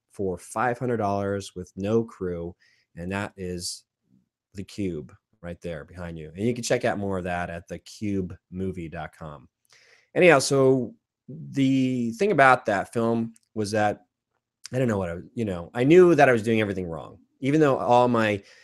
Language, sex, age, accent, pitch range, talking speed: English, male, 20-39, American, 95-120 Hz, 175 wpm